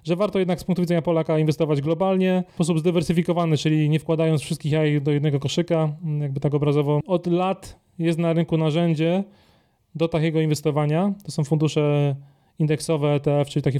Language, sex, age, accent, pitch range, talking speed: Polish, male, 20-39, native, 155-175 Hz, 170 wpm